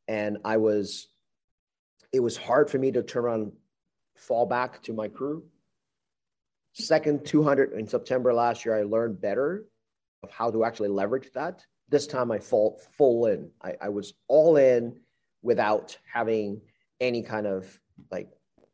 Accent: American